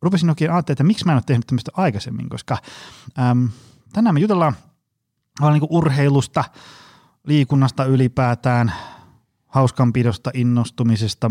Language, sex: Finnish, male